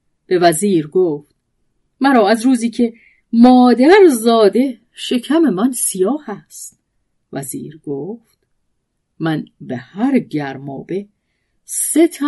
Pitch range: 160-235 Hz